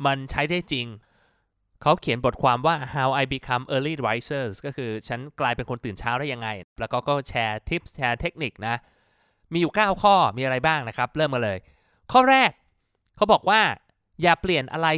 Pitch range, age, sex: 115-155 Hz, 20-39, male